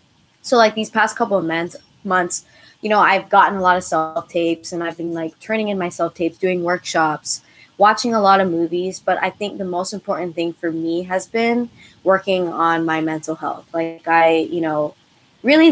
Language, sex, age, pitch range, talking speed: English, female, 20-39, 165-200 Hz, 195 wpm